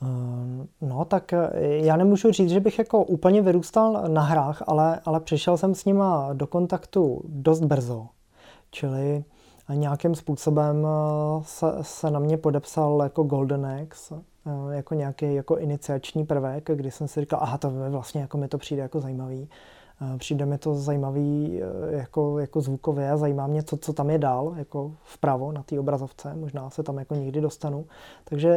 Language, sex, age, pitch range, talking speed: Czech, male, 20-39, 145-165 Hz, 160 wpm